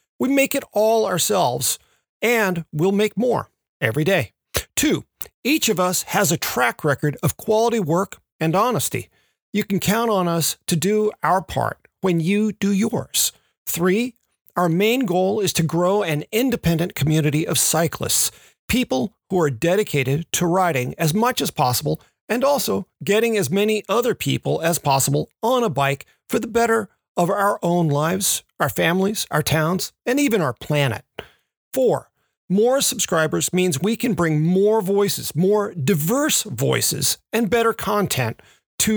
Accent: American